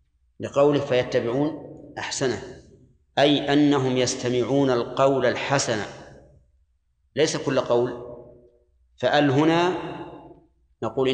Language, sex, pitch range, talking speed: Arabic, male, 120-150 Hz, 70 wpm